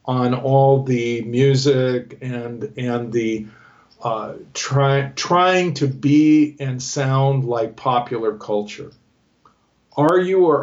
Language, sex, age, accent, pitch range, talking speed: English, male, 50-69, American, 125-145 Hz, 115 wpm